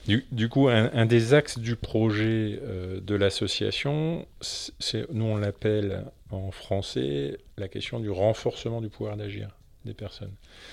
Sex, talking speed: male, 155 wpm